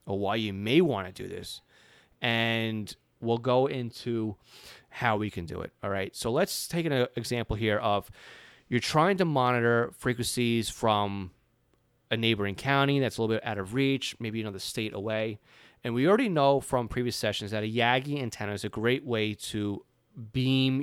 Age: 30-49